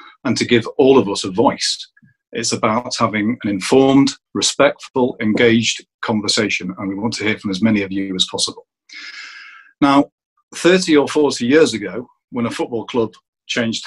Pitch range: 105-135 Hz